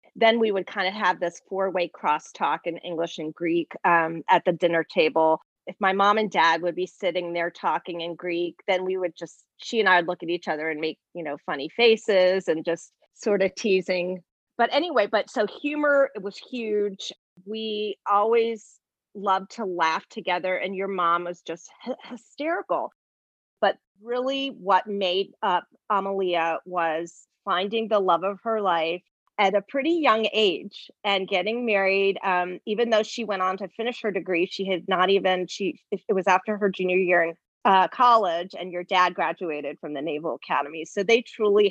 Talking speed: 185 wpm